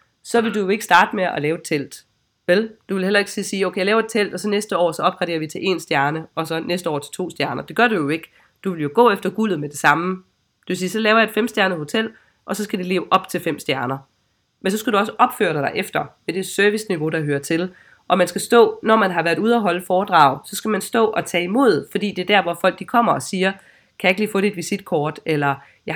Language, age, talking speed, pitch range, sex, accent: Danish, 30-49, 285 wpm, 165-205 Hz, female, native